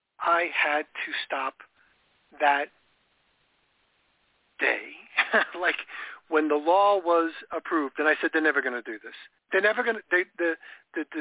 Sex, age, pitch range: male, 50-69, 150-190 Hz